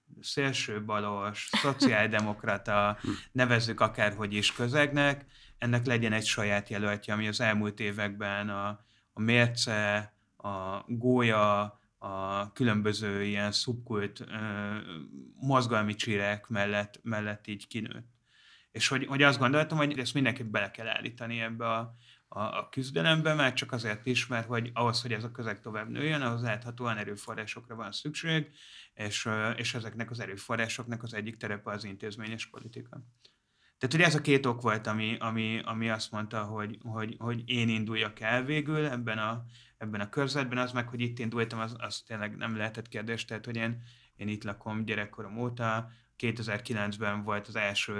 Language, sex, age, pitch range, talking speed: Hungarian, male, 30-49, 105-120 Hz, 155 wpm